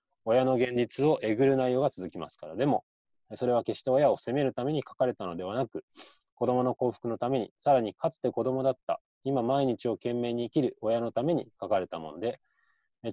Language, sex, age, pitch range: Japanese, male, 20-39, 110-140 Hz